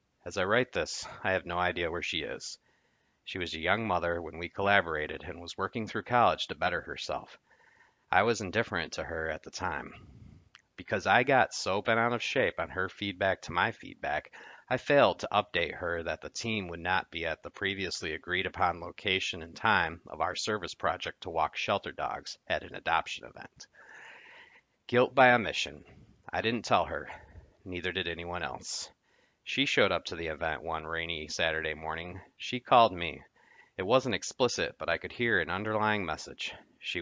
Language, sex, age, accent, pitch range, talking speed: English, male, 40-59, American, 85-105 Hz, 185 wpm